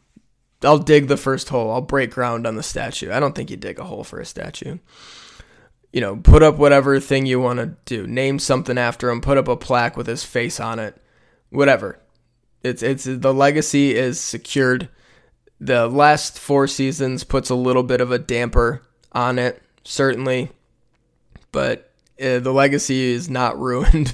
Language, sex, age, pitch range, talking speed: English, male, 20-39, 125-140 Hz, 180 wpm